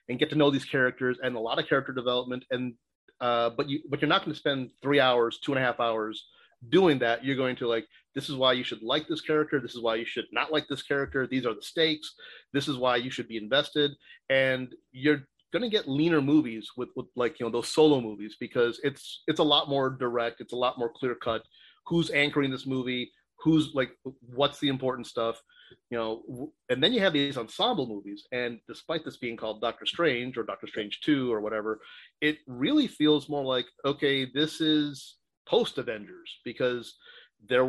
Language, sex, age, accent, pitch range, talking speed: English, male, 30-49, American, 120-145 Hz, 210 wpm